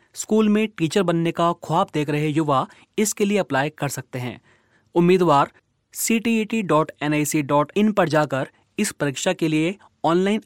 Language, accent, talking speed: Hindi, native, 150 wpm